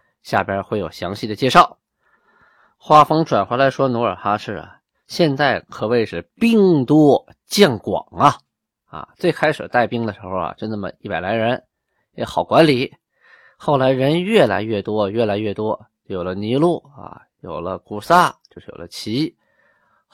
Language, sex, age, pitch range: Chinese, male, 20-39, 105-155 Hz